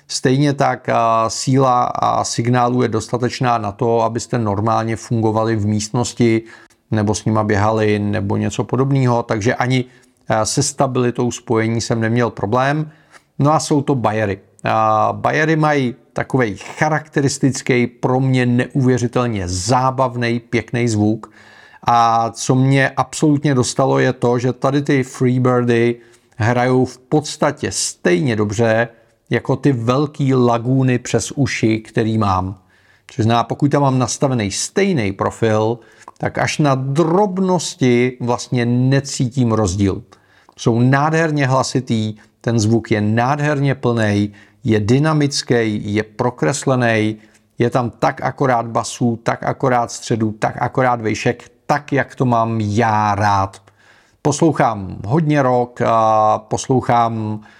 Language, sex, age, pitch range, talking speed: Czech, male, 40-59, 110-135 Hz, 120 wpm